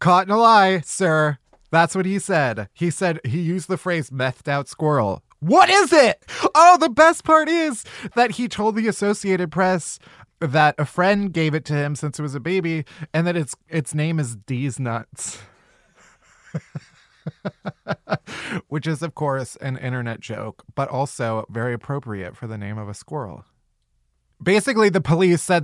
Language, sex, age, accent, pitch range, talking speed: English, male, 20-39, American, 130-185 Hz, 170 wpm